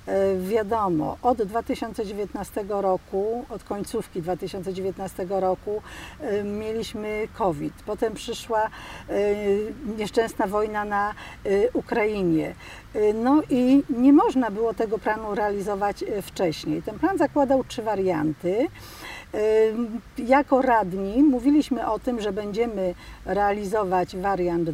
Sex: female